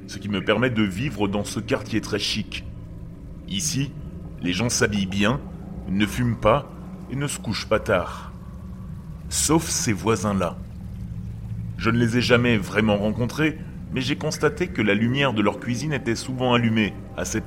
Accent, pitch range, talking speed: French, 100-135 Hz, 165 wpm